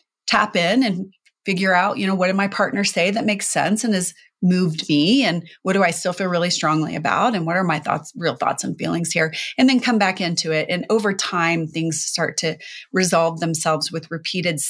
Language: English